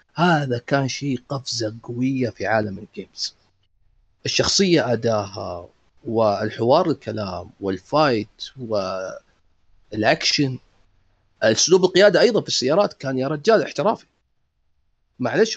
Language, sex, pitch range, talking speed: Arabic, male, 120-185 Hz, 95 wpm